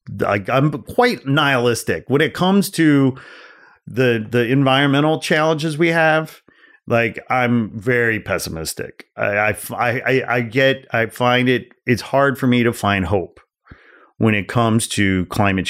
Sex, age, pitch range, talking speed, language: male, 30-49, 95-125 Hz, 145 wpm, English